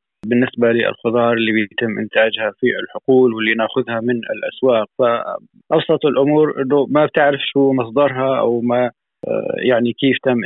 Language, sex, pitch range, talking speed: Arabic, male, 120-150 Hz, 130 wpm